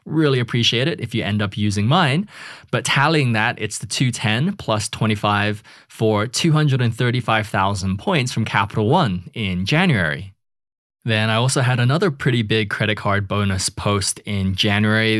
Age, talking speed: 20-39, 150 wpm